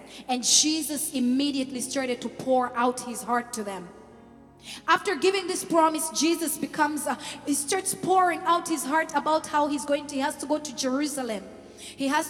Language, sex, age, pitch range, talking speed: English, female, 20-39, 265-345 Hz, 175 wpm